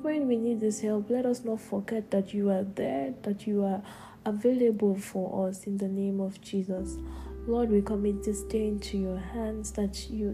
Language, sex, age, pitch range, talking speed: English, female, 10-29, 190-215 Hz, 195 wpm